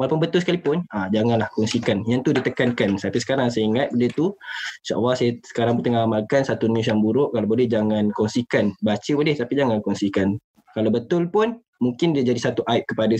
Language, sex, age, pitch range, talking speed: Malay, male, 20-39, 115-145 Hz, 195 wpm